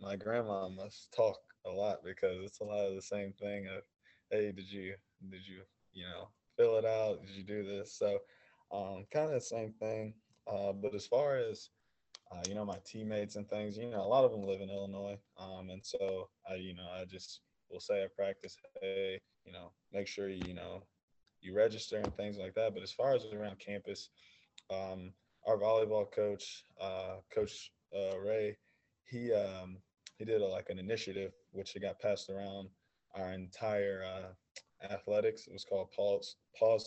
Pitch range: 95-110 Hz